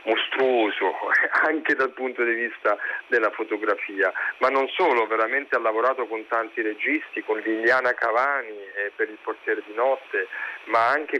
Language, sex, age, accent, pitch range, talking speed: Italian, male, 40-59, native, 110-170 Hz, 150 wpm